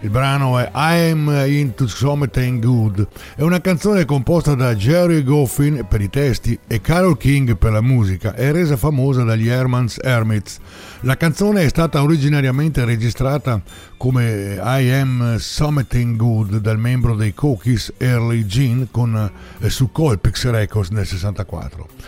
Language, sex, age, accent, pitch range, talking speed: Italian, male, 60-79, native, 120-160 Hz, 145 wpm